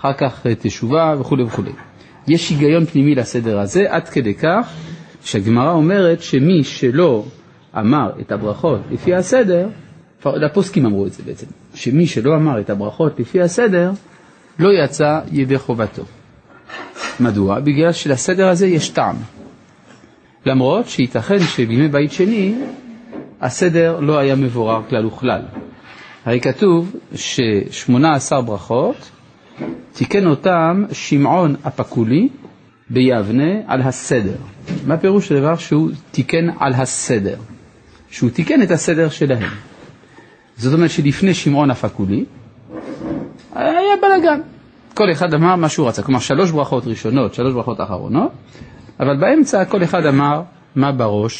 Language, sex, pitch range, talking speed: Hebrew, male, 130-175 Hz, 125 wpm